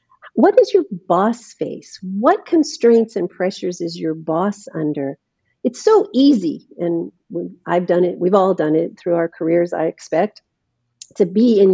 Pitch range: 160-215 Hz